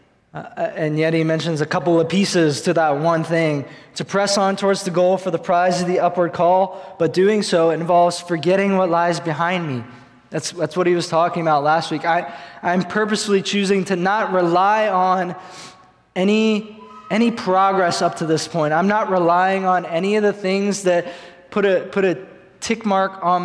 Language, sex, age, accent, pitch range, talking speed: English, male, 20-39, American, 150-185 Hz, 190 wpm